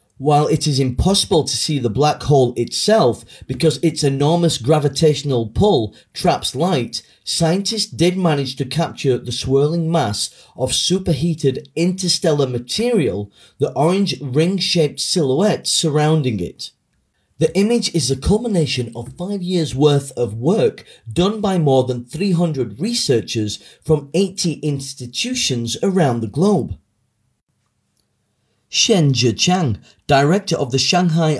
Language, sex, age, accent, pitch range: Chinese, male, 30-49, British, 125-175 Hz